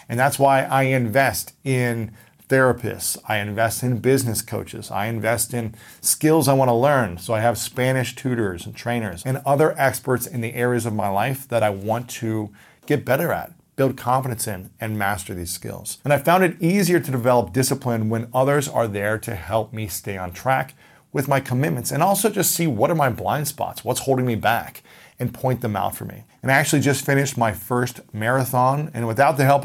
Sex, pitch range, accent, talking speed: male, 110-135 Hz, American, 205 wpm